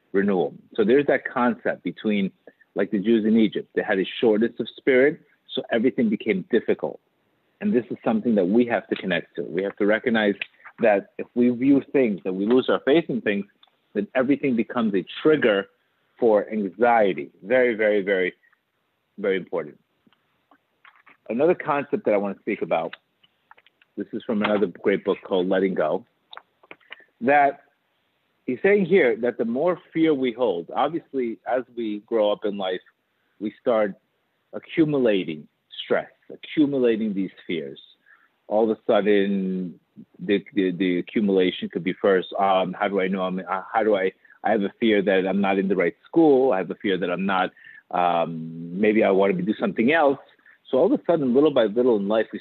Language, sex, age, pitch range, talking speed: English, male, 50-69, 95-125 Hz, 180 wpm